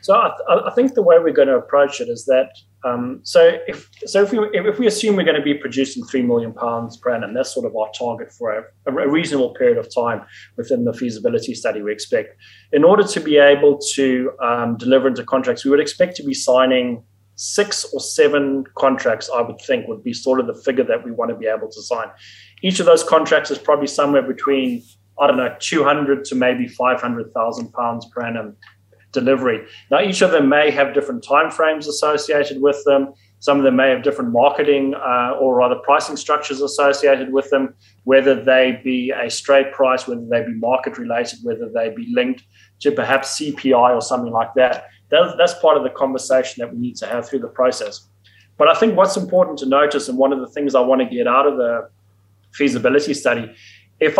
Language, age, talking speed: English, 20-39, 215 wpm